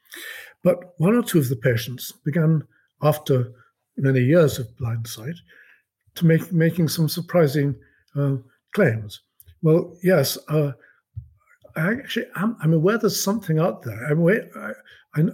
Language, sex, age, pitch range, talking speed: English, male, 60-79, 135-170 Hz, 145 wpm